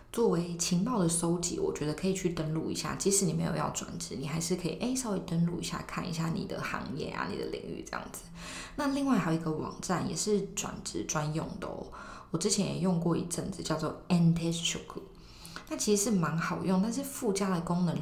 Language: Chinese